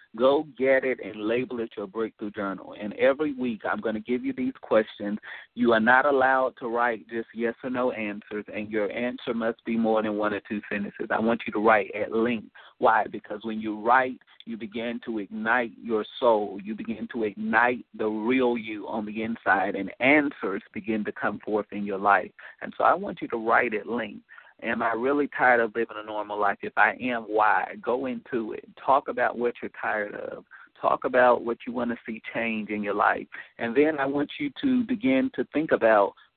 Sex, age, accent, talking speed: male, 40-59, American, 215 wpm